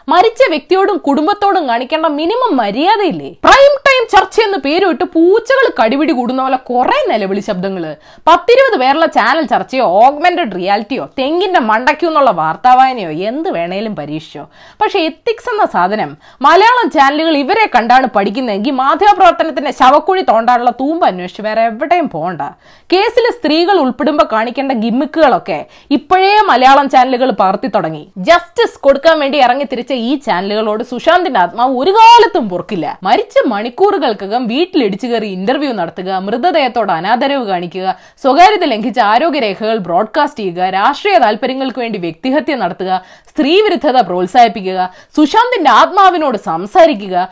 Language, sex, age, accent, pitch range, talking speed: Malayalam, female, 20-39, native, 225-350 Hz, 115 wpm